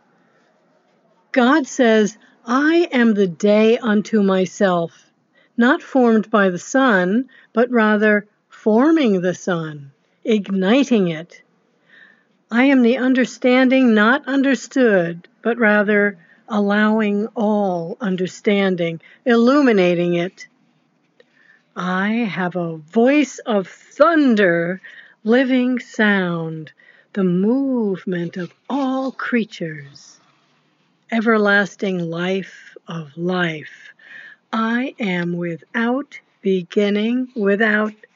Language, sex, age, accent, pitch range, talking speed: English, female, 60-79, American, 185-245 Hz, 85 wpm